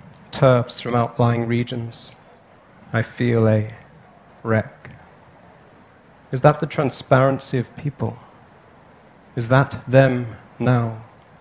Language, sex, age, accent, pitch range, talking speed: English, male, 40-59, British, 105-125 Hz, 95 wpm